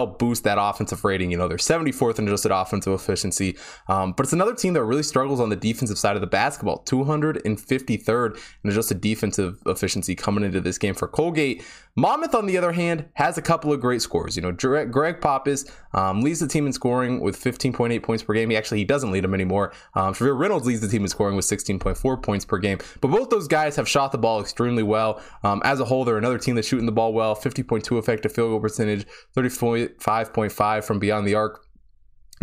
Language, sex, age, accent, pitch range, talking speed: English, male, 20-39, American, 105-130 Hz, 215 wpm